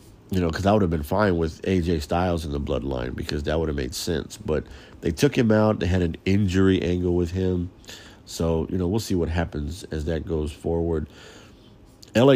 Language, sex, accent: English, male, American